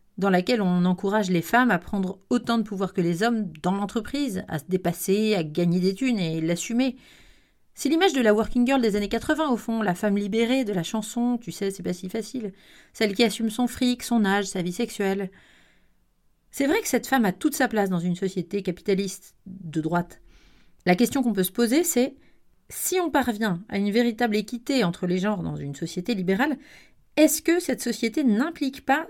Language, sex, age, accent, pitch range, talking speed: French, female, 40-59, French, 185-245 Hz, 205 wpm